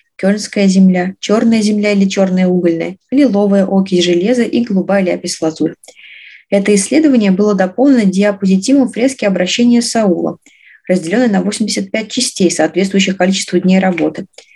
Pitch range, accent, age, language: 175-230 Hz, native, 20-39, Russian